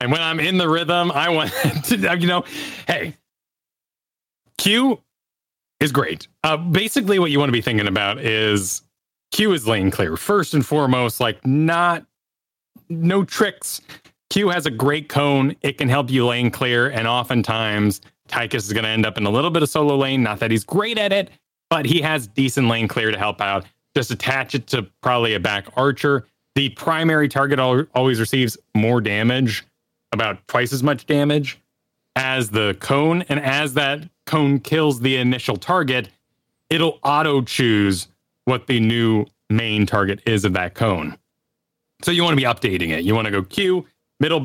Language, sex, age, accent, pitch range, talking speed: English, male, 30-49, American, 110-155 Hz, 180 wpm